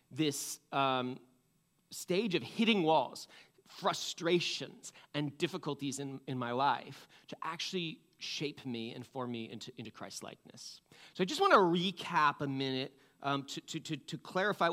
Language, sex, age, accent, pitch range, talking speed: English, male, 30-49, American, 135-185 Hz, 150 wpm